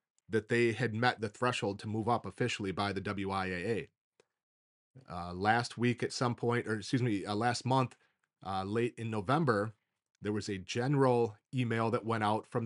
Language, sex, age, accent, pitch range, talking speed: English, male, 30-49, American, 105-125 Hz, 180 wpm